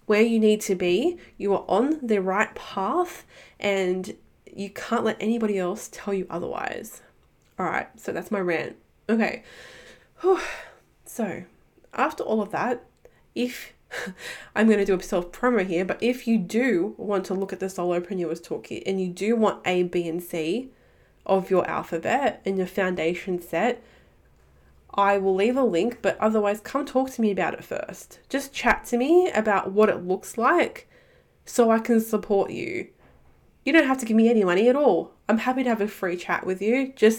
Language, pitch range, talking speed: English, 185-235 Hz, 185 wpm